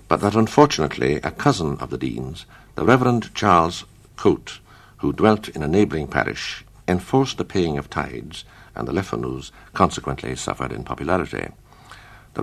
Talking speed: 150 wpm